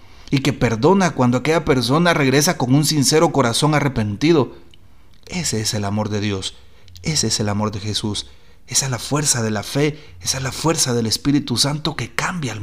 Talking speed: 195 wpm